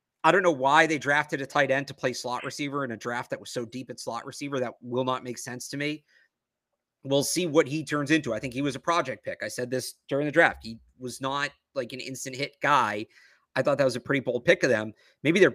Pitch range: 135-170 Hz